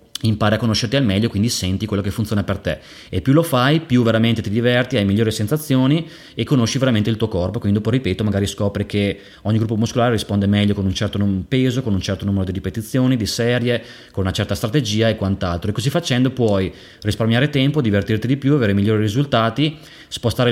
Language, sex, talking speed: Italian, male, 210 wpm